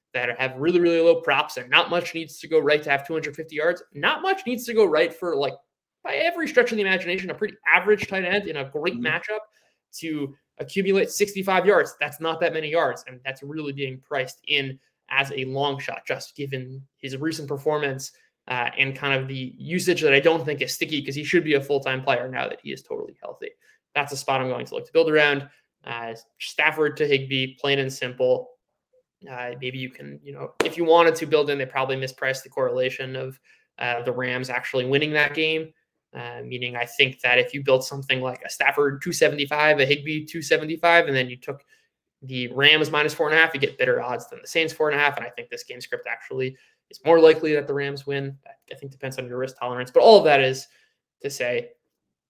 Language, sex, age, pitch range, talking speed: English, male, 20-39, 130-170 Hz, 225 wpm